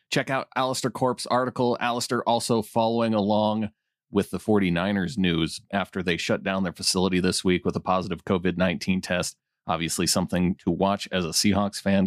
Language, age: English, 30-49